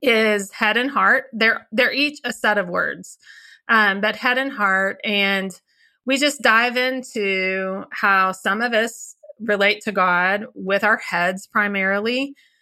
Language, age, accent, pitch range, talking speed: English, 30-49, American, 190-230 Hz, 150 wpm